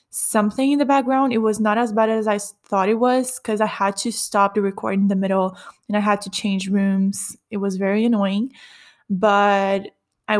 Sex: female